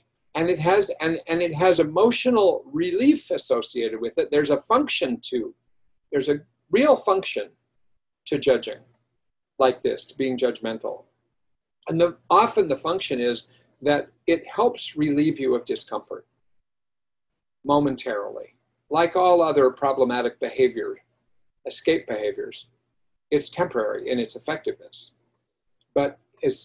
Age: 50-69